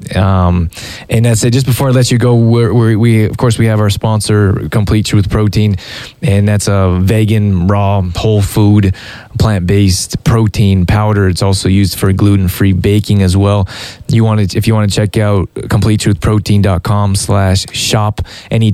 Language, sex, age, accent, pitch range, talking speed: English, male, 20-39, American, 95-110 Hz, 165 wpm